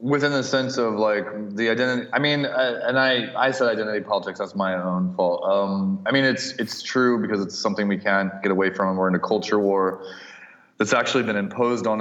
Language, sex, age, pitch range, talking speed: English, male, 20-39, 95-115 Hz, 220 wpm